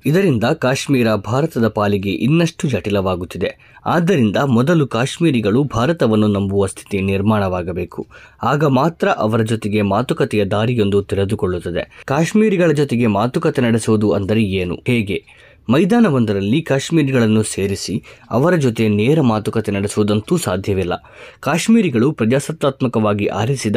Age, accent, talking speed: 20-39, native, 100 wpm